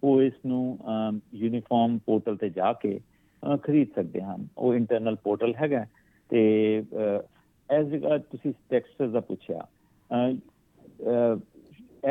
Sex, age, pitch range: male, 60-79, 105-125 Hz